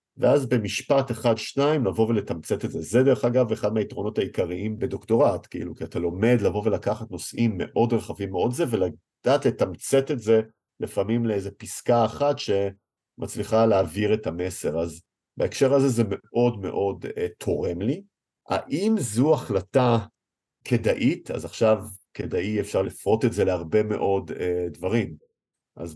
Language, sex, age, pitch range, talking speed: Hebrew, male, 50-69, 95-120 Hz, 145 wpm